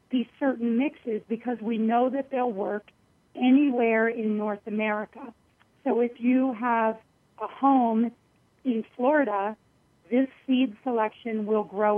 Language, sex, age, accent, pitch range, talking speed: English, female, 40-59, American, 215-245 Hz, 130 wpm